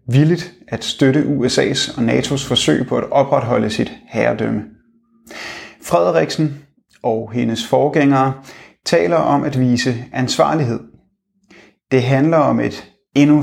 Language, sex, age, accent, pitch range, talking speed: Danish, male, 30-49, native, 115-145 Hz, 115 wpm